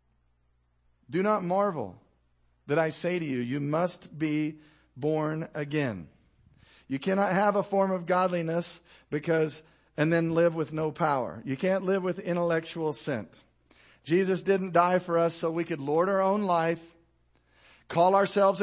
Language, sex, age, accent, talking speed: English, male, 50-69, American, 150 wpm